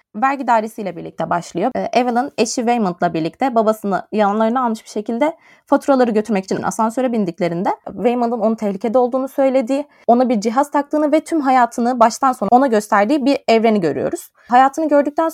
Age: 20-39